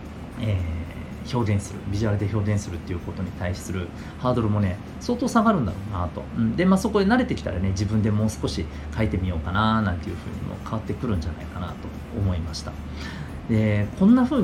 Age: 40-59